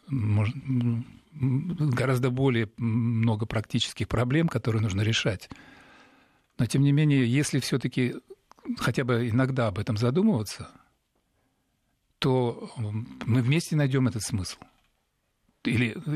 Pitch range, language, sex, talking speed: 110-135 Hz, Russian, male, 100 wpm